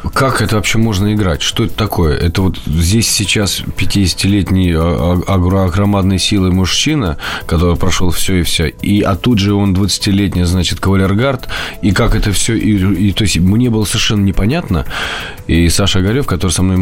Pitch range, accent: 85-105 Hz, native